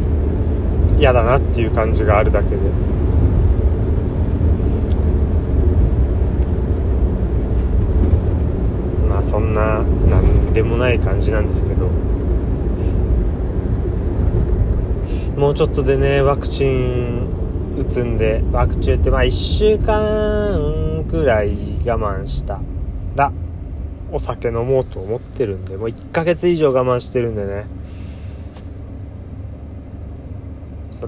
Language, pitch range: Japanese, 85-100 Hz